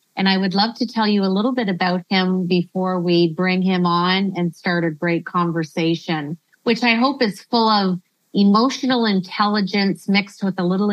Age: 30-49